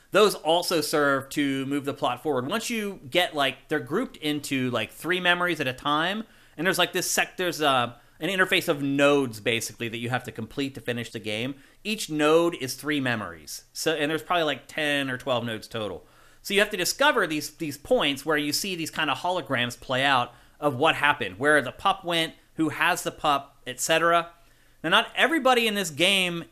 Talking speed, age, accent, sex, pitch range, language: 210 wpm, 30-49, American, male, 130-170 Hz, English